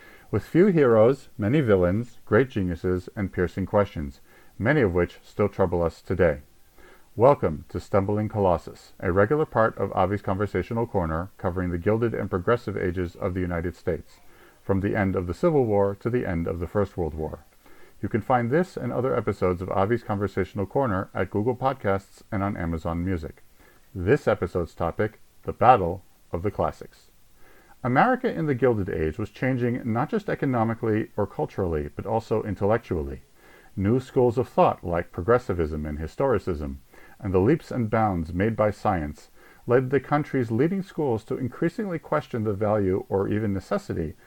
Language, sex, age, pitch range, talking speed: English, male, 50-69, 90-120 Hz, 165 wpm